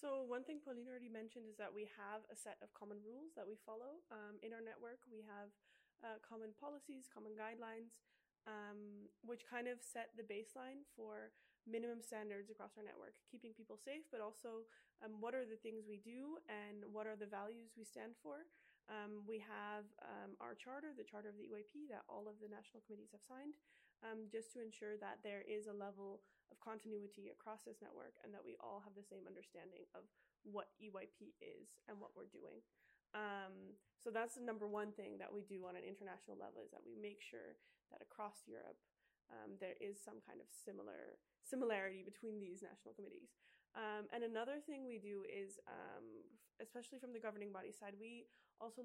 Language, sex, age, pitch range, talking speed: English, female, 20-39, 210-245 Hz, 200 wpm